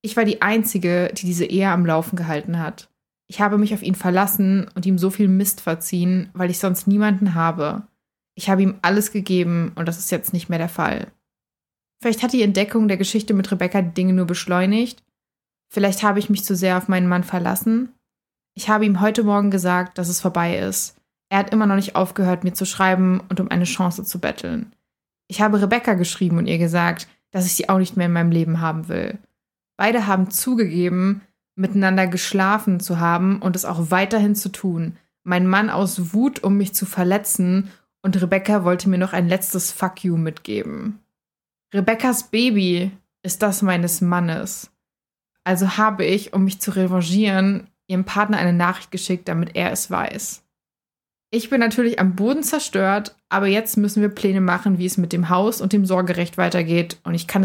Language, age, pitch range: German, 20-39, 180-205 Hz